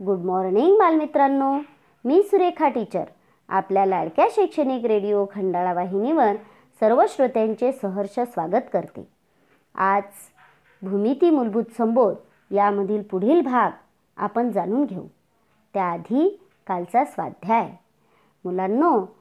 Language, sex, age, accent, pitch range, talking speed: Marathi, male, 40-59, native, 195-280 Hz, 95 wpm